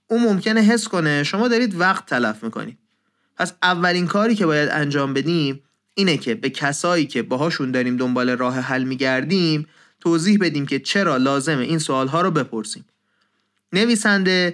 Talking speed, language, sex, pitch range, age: 155 wpm, Persian, male, 130-185 Hz, 30-49